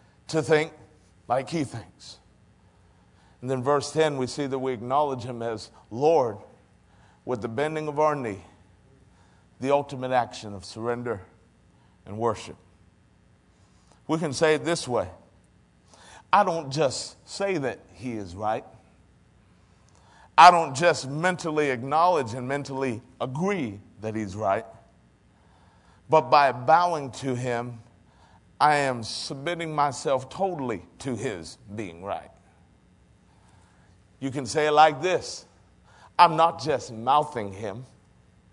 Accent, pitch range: American, 110-155 Hz